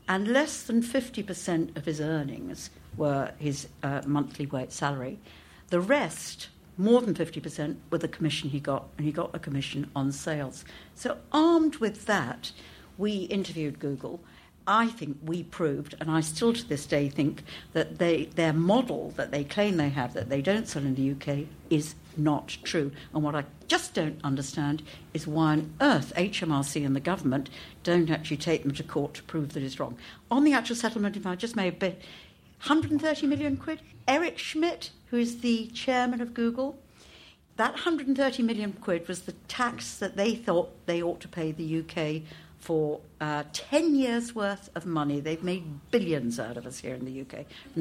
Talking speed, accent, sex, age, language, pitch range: 185 wpm, British, female, 60-79, English, 150-210 Hz